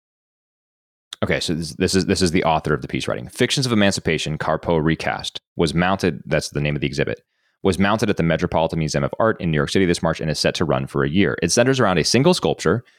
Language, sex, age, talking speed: English, male, 30-49, 250 wpm